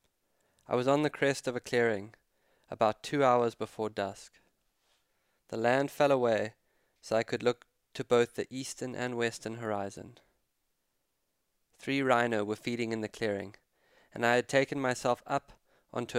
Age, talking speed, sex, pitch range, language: 20-39, 155 wpm, male, 110-130 Hz, English